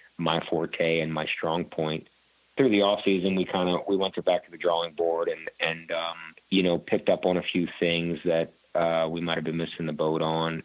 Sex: male